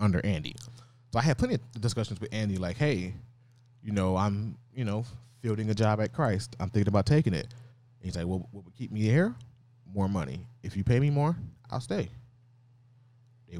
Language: English